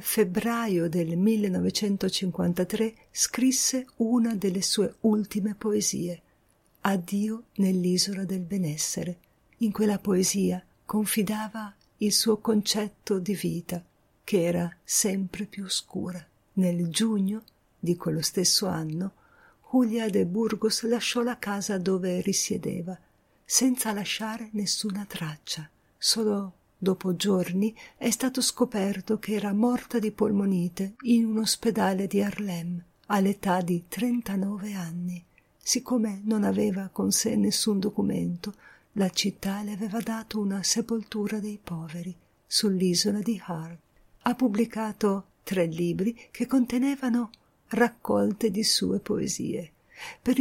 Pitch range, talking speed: 185-225 Hz, 115 wpm